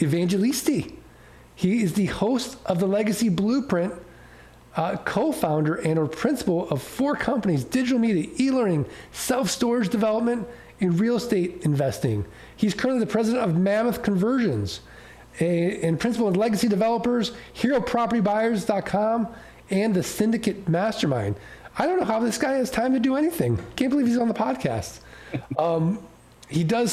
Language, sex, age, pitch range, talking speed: English, male, 40-59, 155-220 Hz, 145 wpm